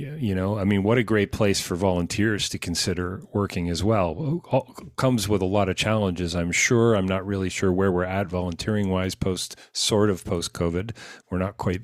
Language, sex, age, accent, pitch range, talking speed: English, male, 40-59, American, 95-120 Hz, 205 wpm